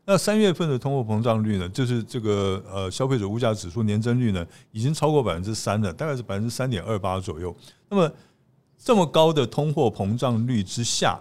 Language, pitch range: Chinese, 100-140 Hz